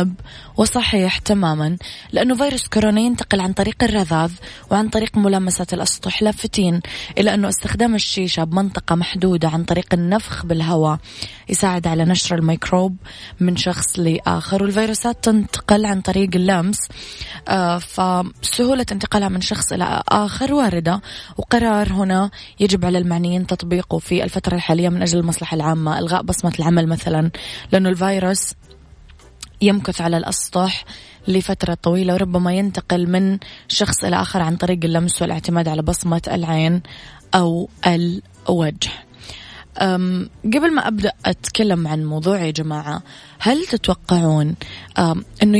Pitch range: 170-205 Hz